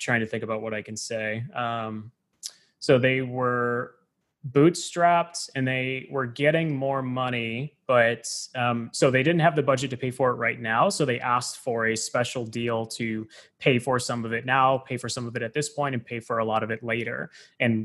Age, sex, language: 20-39, male, English